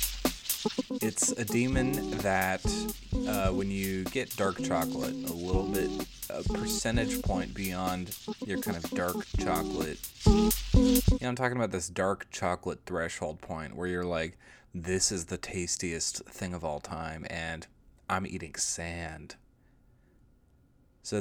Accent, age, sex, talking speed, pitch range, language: American, 20-39, male, 130 wpm, 90-115 Hz, English